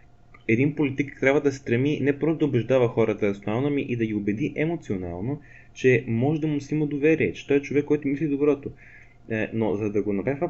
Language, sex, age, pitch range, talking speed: Bulgarian, male, 20-39, 115-145 Hz, 205 wpm